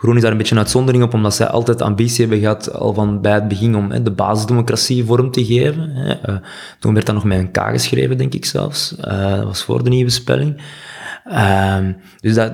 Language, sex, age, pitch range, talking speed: Dutch, male, 20-39, 100-120 Hz, 230 wpm